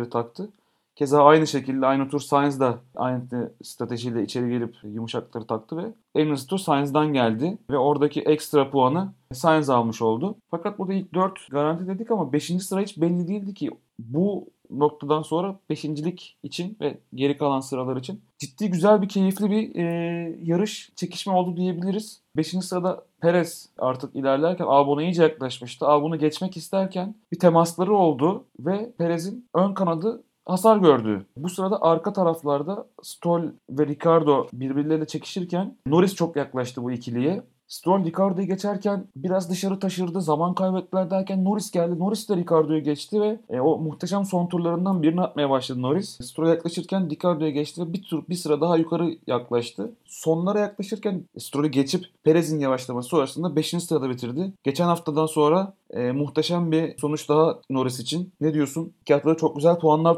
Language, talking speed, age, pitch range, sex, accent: Turkish, 155 wpm, 30-49, 145-185 Hz, male, native